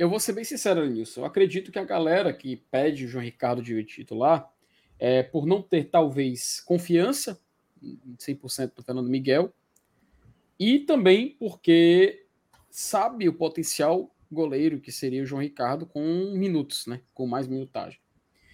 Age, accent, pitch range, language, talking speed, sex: 20-39, Brazilian, 130-180 Hz, Portuguese, 150 wpm, male